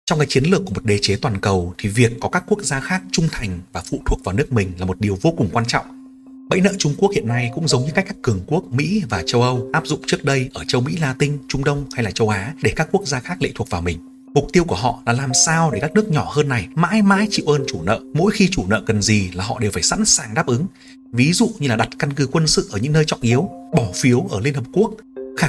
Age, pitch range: 30-49, 120-160 Hz